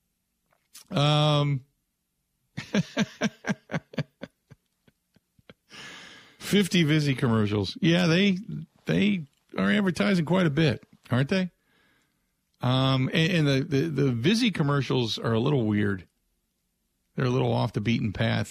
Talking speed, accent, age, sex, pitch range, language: 105 wpm, American, 50-69, male, 110-160 Hz, English